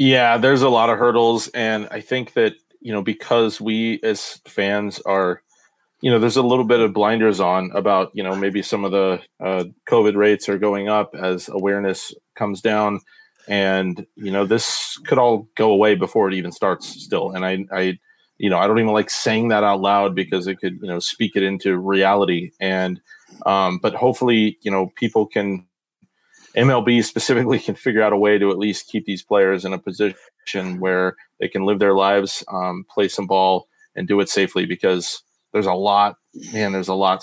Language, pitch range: English, 95-110 Hz